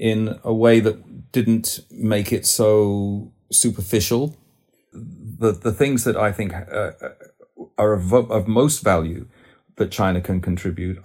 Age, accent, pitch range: 40-59, British, 95-120 Hz